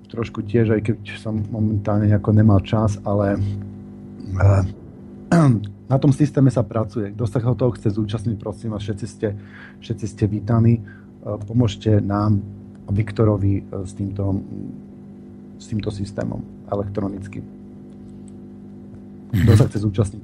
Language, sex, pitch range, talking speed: Slovak, male, 105-130 Hz, 115 wpm